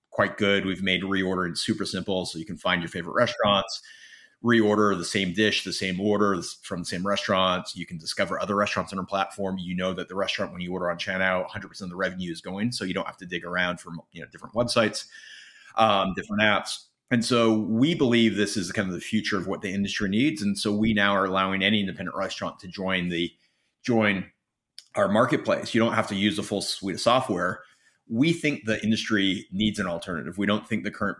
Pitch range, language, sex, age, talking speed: 90-110 Hz, English, male, 30-49, 225 wpm